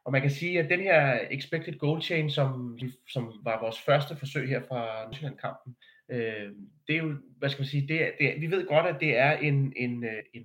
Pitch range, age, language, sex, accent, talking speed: 125-155 Hz, 30-49, Danish, male, native, 230 wpm